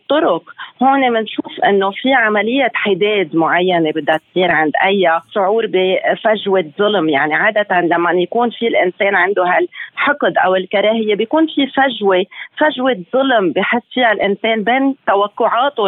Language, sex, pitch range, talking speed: Arabic, female, 190-240 Hz, 130 wpm